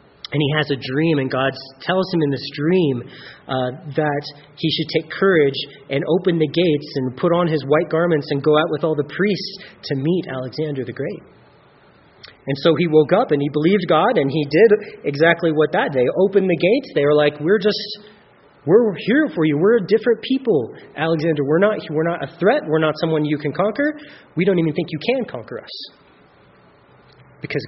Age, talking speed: 30-49, 205 wpm